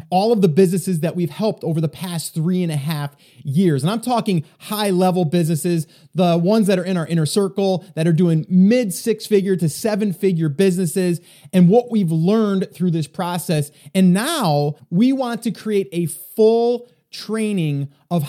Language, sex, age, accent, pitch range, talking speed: English, male, 30-49, American, 170-215 Hz, 175 wpm